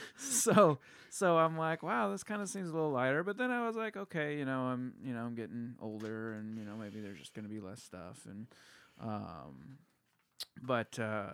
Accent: American